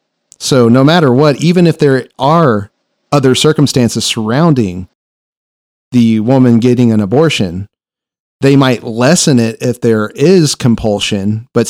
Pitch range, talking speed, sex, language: 115-140 Hz, 130 wpm, male, English